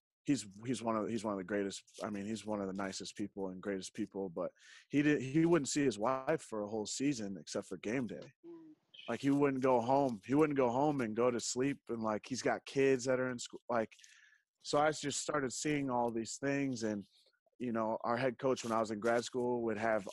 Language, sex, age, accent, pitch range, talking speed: English, male, 20-39, American, 100-130 Hz, 245 wpm